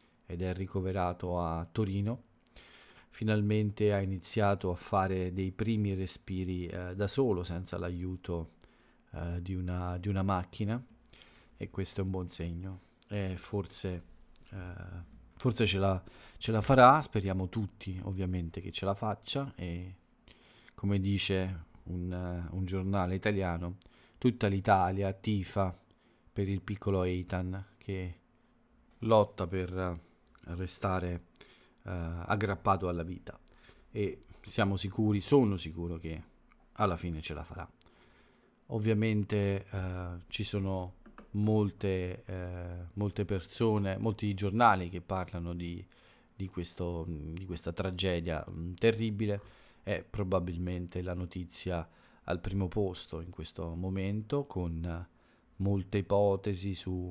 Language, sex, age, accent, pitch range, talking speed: Italian, male, 40-59, native, 90-105 Hz, 115 wpm